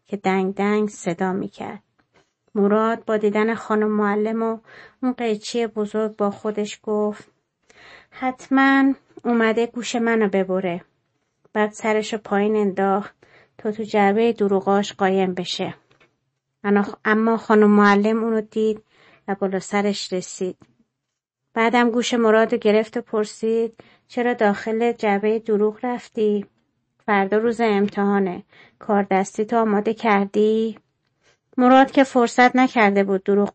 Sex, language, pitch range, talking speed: female, Persian, 200-230 Hz, 120 wpm